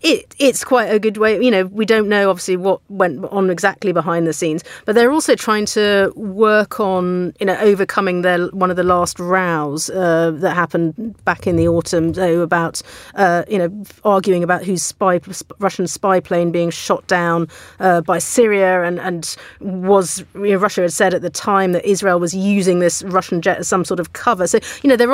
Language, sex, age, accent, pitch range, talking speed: English, female, 40-59, British, 170-200 Hz, 210 wpm